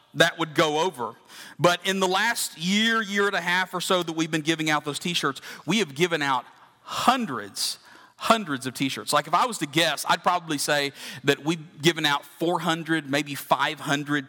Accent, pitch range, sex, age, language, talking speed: American, 155-200 Hz, male, 40-59, English, 195 wpm